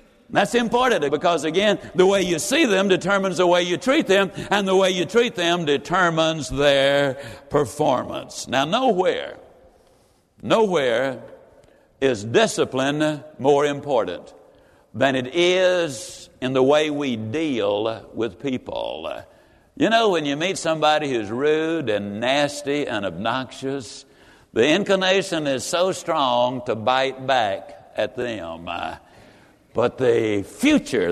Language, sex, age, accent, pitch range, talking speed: English, male, 60-79, American, 140-195 Hz, 125 wpm